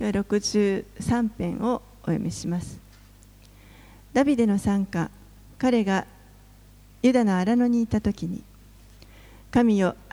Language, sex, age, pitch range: Japanese, female, 40-59, 165-220 Hz